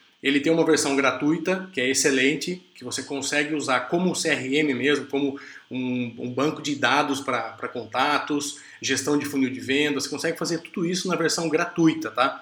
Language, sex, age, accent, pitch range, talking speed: Portuguese, male, 20-39, Brazilian, 130-155 Hz, 180 wpm